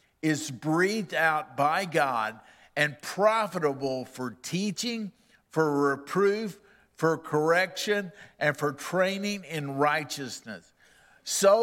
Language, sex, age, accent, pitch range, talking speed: English, male, 50-69, American, 145-190 Hz, 100 wpm